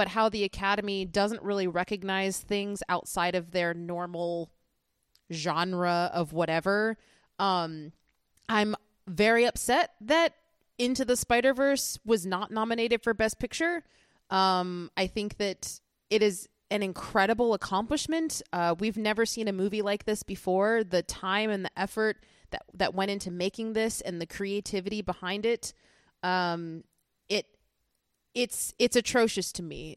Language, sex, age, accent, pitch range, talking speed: English, female, 30-49, American, 170-215 Hz, 140 wpm